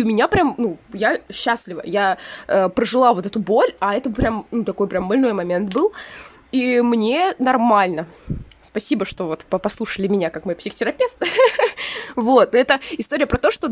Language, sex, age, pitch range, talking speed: Russian, female, 20-39, 200-250 Hz, 170 wpm